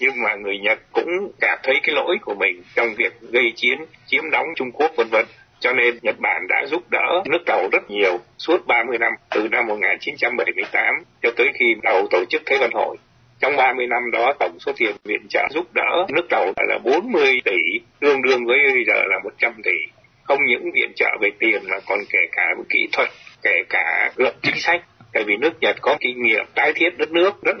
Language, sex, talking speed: Vietnamese, male, 215 wpm